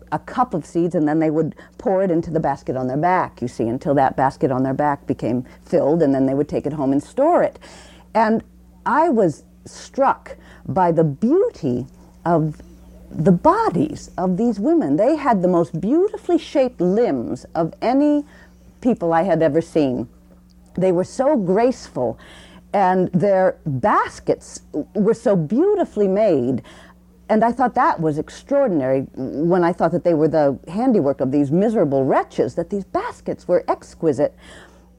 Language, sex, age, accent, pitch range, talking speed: English, female, 50-69, American, 140-225 Hz, 165 wpm